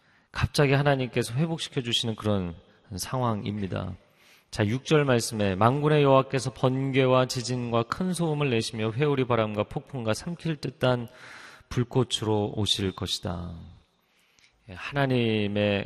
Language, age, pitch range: Korean, 40-59, 105-145 Hz